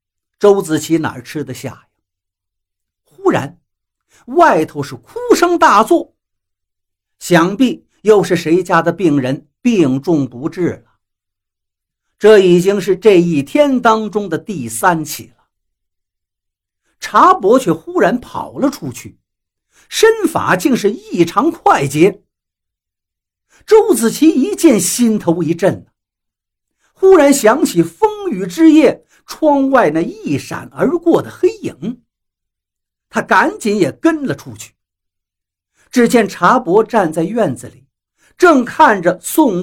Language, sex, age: Chinese, male, 50-69